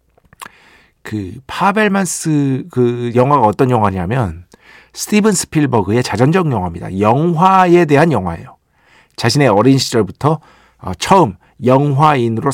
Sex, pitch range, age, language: male, 105-155 Hz, 50-69, Korean